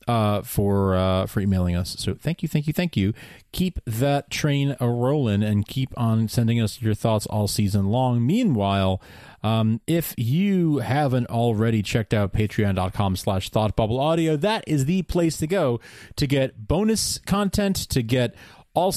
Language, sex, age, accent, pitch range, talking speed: English, male, 30-49, American, 105-145 Hz, 160 wpm